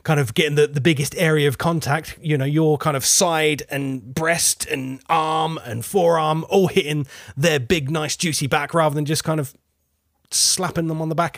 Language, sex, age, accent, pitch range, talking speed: English, male, 30-49, British, 135-165 Hz, 200 wpm